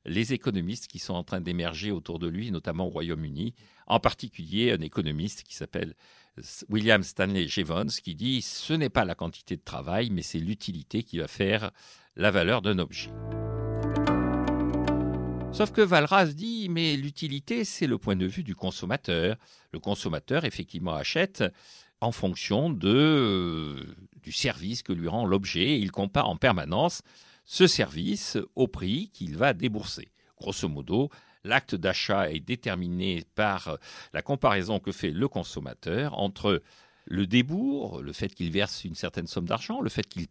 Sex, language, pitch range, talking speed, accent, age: male, French, 90-140 Hz, 160 wpm, French, 50-69